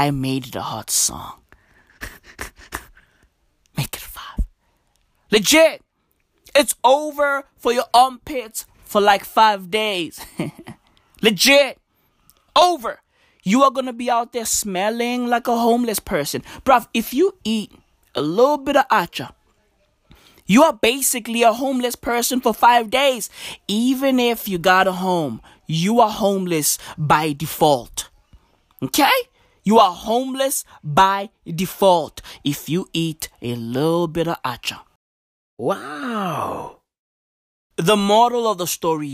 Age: 20-39